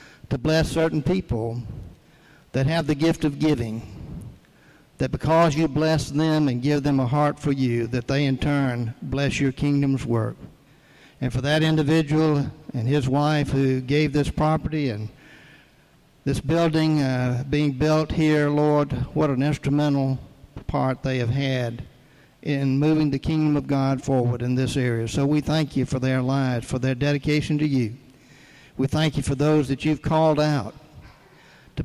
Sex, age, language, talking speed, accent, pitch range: male, 60-79, English, 165 wpm, American, 130-150 Hz